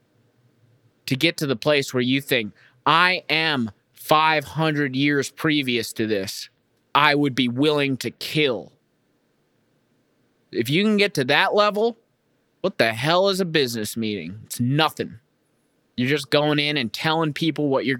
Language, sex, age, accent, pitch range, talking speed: English, male, 20-39, American, 125-165 Hz, 155 wpm